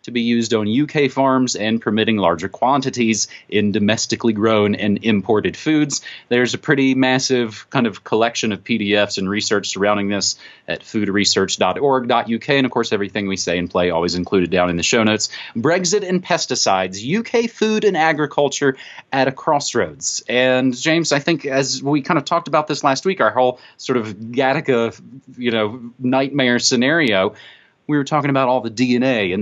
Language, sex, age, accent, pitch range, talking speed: English, male, 30-49, American, 110-165 Hz, 170 wpm